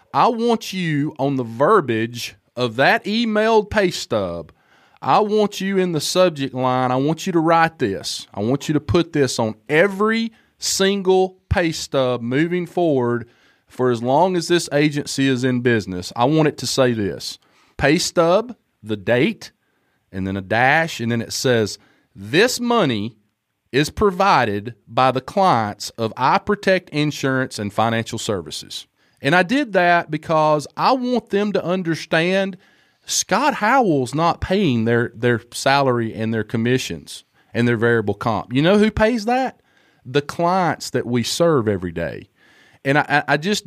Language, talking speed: English, 160 wpm